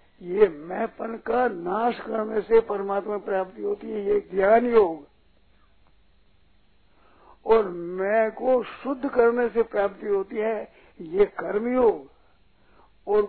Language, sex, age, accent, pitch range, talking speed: Hindi, male, 60-79, native, 205-255 Hz, 115 wpm